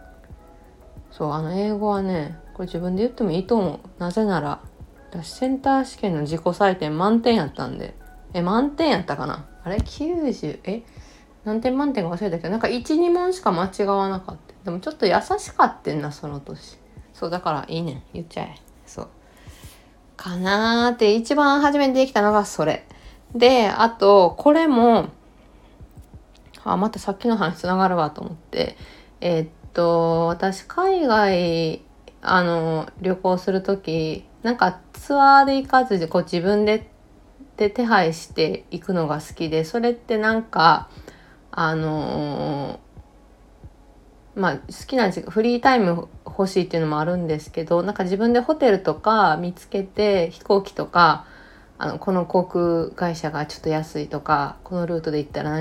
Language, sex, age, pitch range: Japanese, female, 20-39, 165-230 Hz